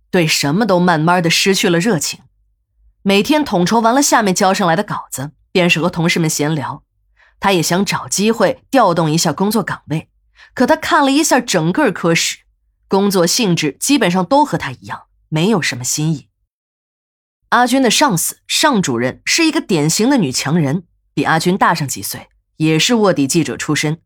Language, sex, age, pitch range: Chinese, female, 20-39, 155-225 Hz